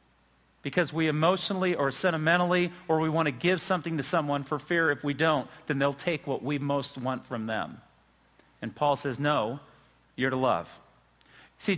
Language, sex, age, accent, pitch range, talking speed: English, male, 40-59, American, 130-175 Hz, 180 wpm